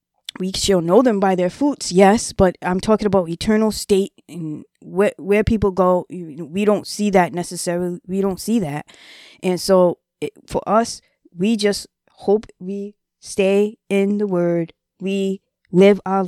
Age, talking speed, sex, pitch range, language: 20-39, 160 wpm, female, 160-185 Hz, English